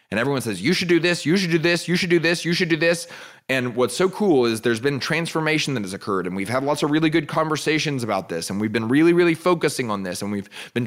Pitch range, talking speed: 120-165 Hz, 280 wpm